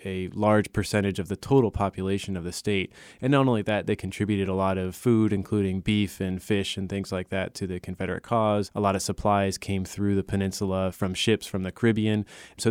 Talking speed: 215 wpm